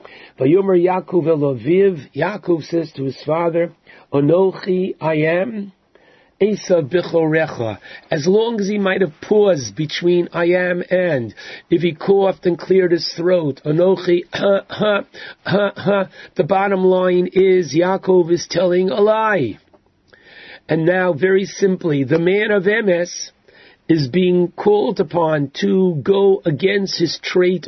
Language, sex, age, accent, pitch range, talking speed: English, male, 50-69, American, 160-190 Hz, 135 wpm